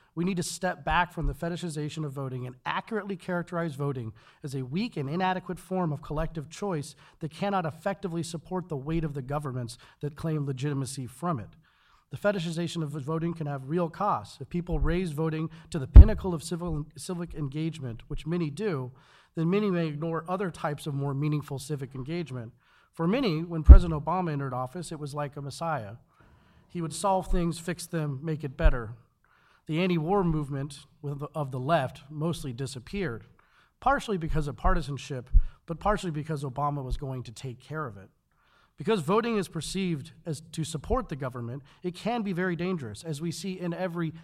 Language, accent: English, American